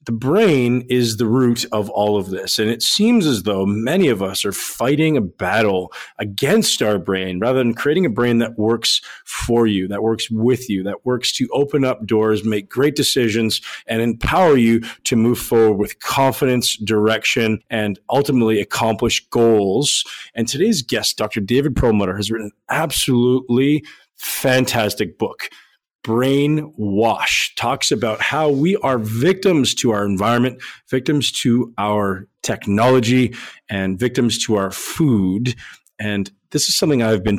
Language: English